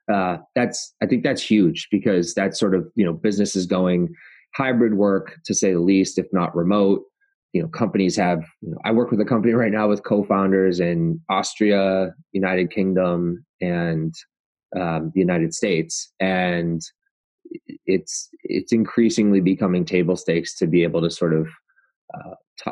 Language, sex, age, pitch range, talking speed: English, male, 20-39, 90-105 Hz, 165 wpm